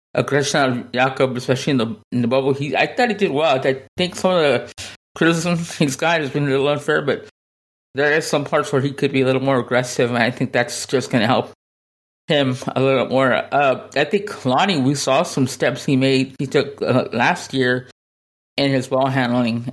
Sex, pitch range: male, 125-140 Hz